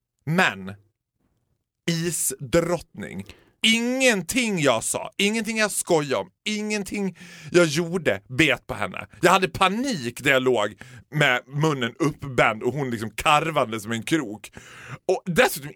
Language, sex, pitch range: Swedish, male, 120-180 Hz